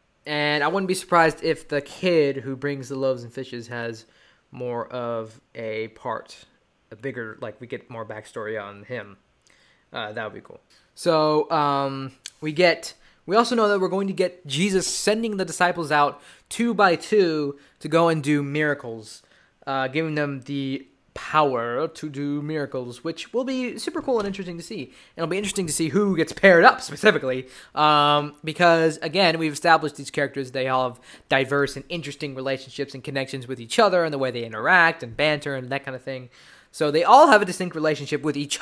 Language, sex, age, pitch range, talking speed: English, male, 20-39, 135-165 Hz, 195 wpm